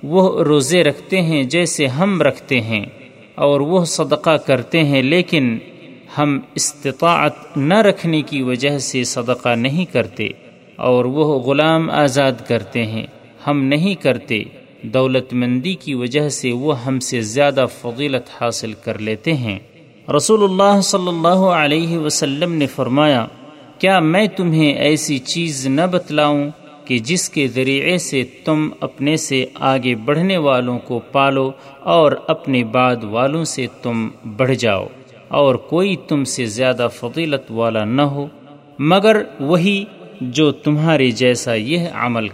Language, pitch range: Urdu, 125-160 Hz